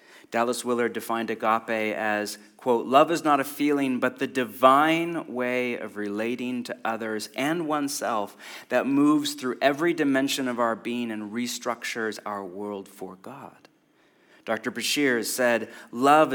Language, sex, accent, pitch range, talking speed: English, male, American, 105-140 Hz, 145 wpm